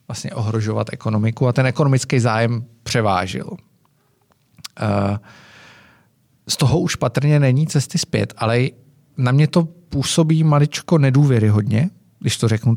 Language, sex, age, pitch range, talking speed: Czech, male, 40-59, 115-150 Hz, 120 wpm